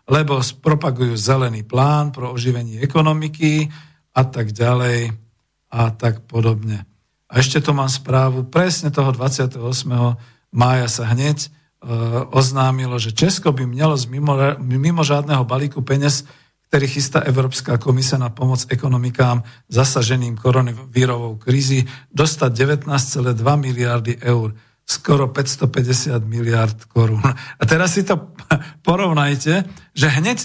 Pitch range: 120-150 Hz